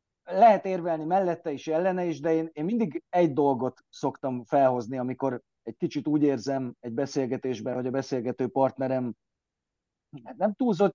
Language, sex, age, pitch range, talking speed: Hungarian, male, 30-49, 125-160 Hz, 150 wpm